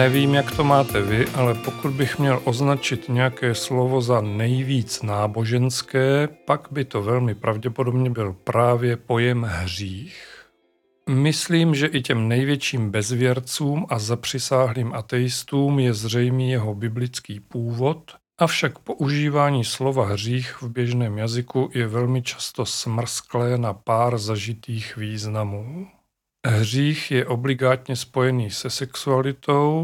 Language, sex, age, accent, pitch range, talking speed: Czech, male, 40-59, native, 115-135 Hz, 120 wpm